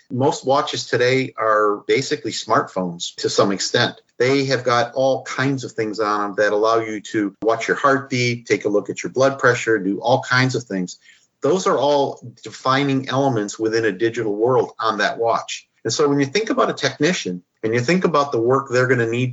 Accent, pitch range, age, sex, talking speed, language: American, 110-135 Hz, 50-69, male, 210 wpm, English